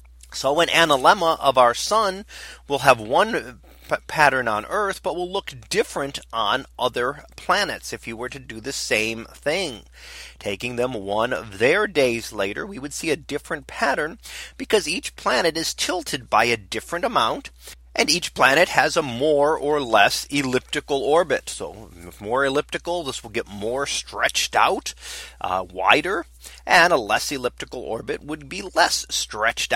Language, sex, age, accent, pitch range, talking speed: English, male, 30-49, American, 115-155 Hz, 160 wpm